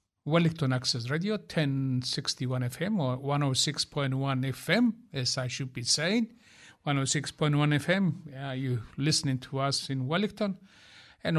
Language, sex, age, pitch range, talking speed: English, male, 60-79, 130-175 Hz, 115 wpm